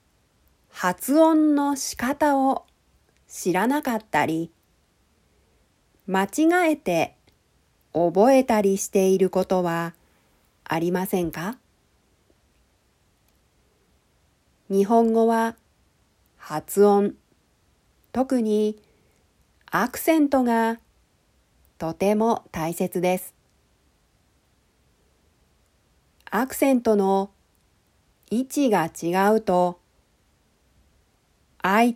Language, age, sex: Japanese, 40-59, female